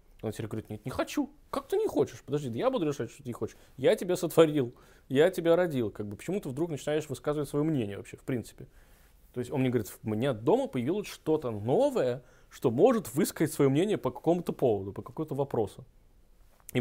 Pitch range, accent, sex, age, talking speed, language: 120-160 Hz, native, male, 20-39, 205 wpm, Russian